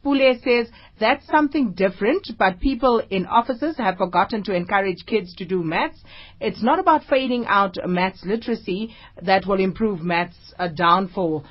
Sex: female